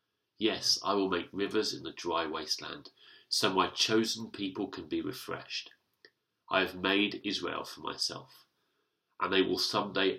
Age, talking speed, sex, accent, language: 40-59, 155 wpm, male, British, English